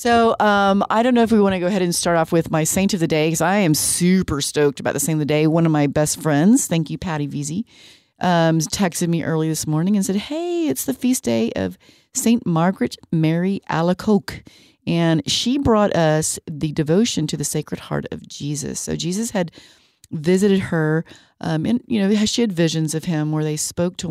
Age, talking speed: 40-59, 220 wpm